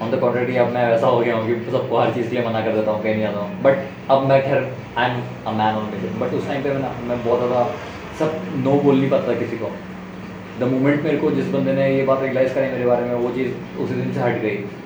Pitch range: 110-135 Hz